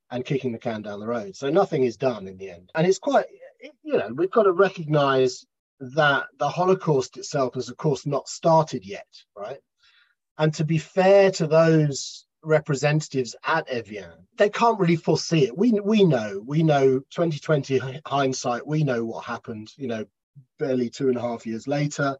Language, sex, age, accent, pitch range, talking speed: English, male, 30-49, British, 125-175 Hz, 185 wpm